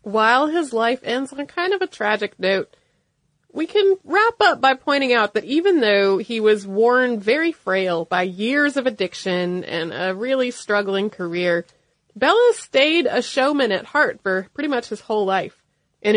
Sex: female